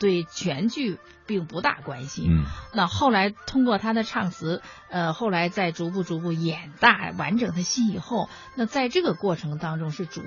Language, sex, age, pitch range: Chinese, female, 50-69, 170-225 Hz